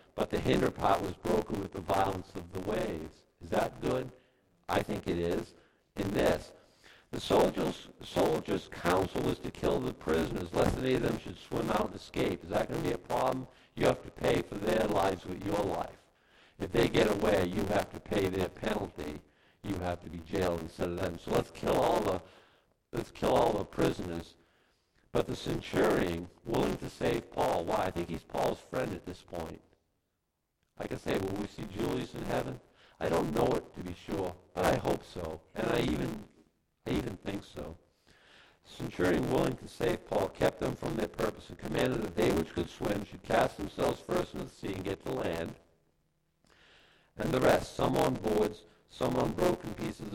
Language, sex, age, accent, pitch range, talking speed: English, male, 60-79, American, 85-105 Hz, 195 wpm